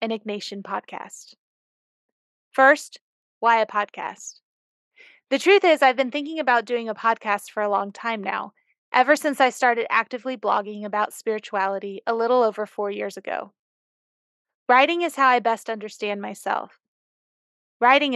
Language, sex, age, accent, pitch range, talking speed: English, female, 20-39, American, 210-255 Hz, 140 wpm